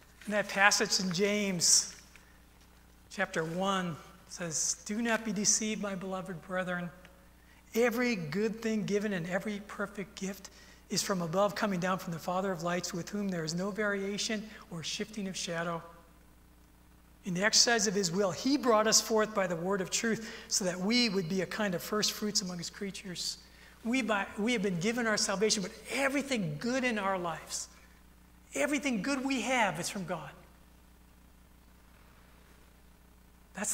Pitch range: 160-225 Hz